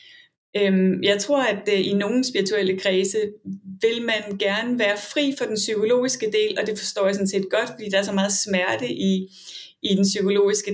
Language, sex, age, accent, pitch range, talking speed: Danish, female, 30-49, native, 195-230 Hz, 180 wpm